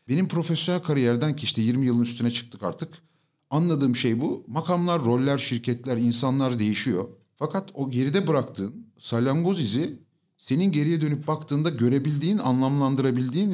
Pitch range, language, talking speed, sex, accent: 120-160 Hz, Turkish, 135 wpm, male, native